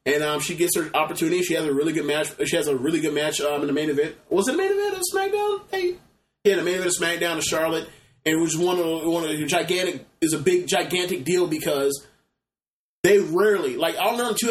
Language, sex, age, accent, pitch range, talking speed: English, male, 20-39, American, 155-190 Hz, 250 wpm